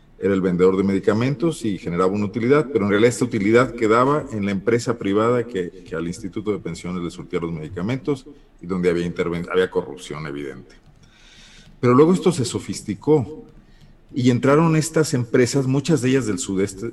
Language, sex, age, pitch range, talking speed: Spanish, male, 50-69, 95-130 Hz, 175 wpm